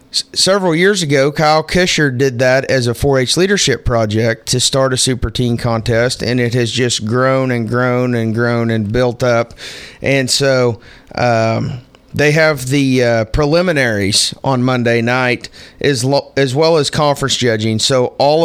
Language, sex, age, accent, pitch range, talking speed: English, male, 30-49, American, 125-150 Hz, 165 wpm